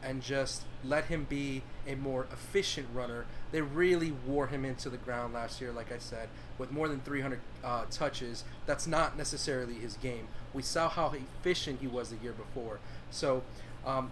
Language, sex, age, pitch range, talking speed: English, male, 30-49, 120-145 Hz, 185 wpm